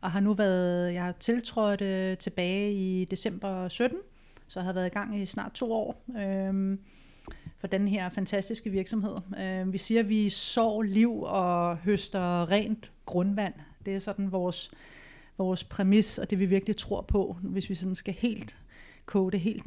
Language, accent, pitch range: Danish, native, 190-215 Hz